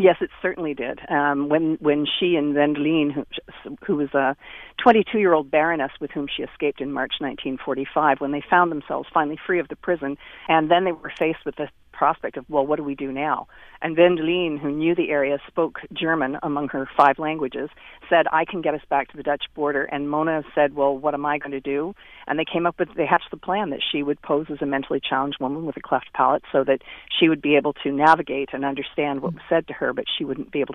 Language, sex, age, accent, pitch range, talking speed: English, female, 50-69, American, 140-165 Hz, 235 wpm